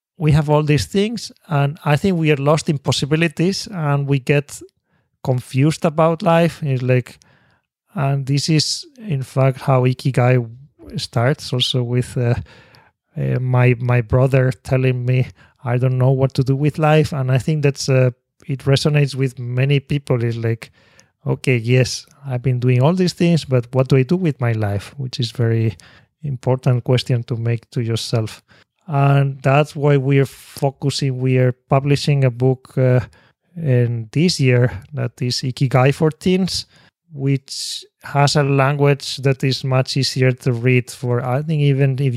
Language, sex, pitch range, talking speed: English, male, 125-145 Hz, 170 wpm